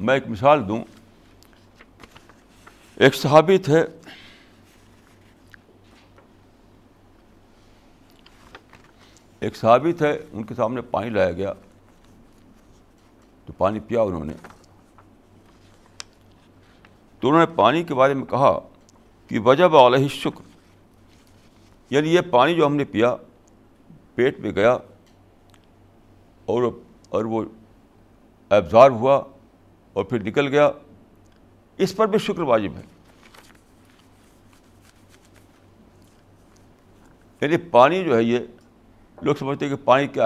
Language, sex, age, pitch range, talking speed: Urdu, male, 60-79, 100-145 Hz, 105 wpm